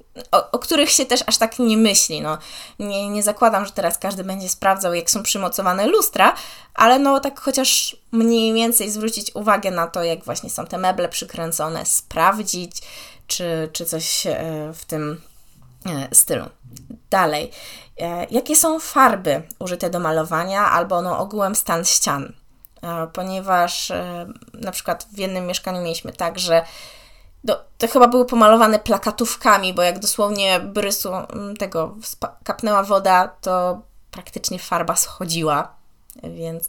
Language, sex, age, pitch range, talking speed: Polish, female, 20-39, 170-215 Hz, 135 wpm